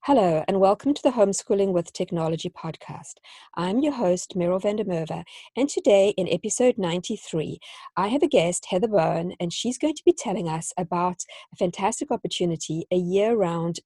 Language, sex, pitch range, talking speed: English, female, 170-230 Hz, 170 wpm